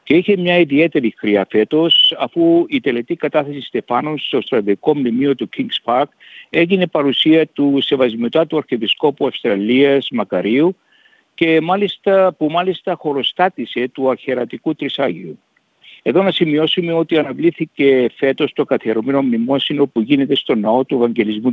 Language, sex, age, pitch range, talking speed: Greek, male, 60-79, 130-170 Hz, 135 wpm